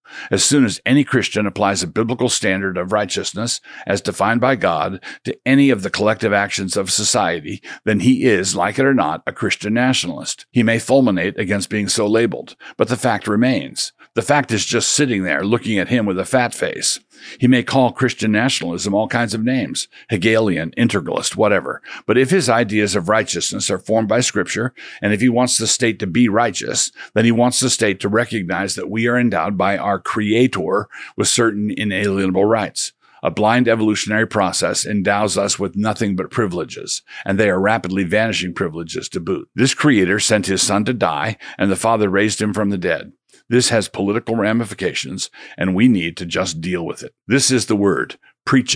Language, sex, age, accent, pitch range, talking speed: English, male, 50-69, American, 100-120 Hz, 190 wpm